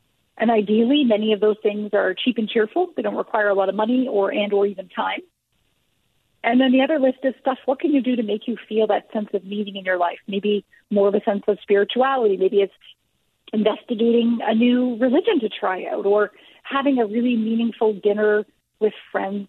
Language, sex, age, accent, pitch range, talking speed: English, female, 40-59, American, 205-260 Hz, 210 wpm